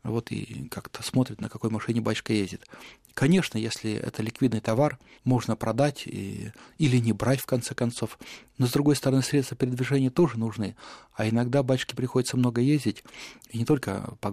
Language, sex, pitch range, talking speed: Russian, male, 115-135 Hz, 170 wpm